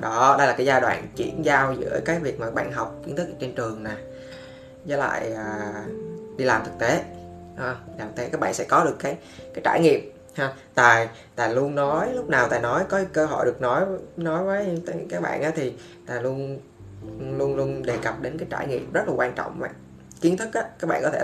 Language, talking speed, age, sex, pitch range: Vietnamese, 235 wpm, 20-39, female, 105-150 Hz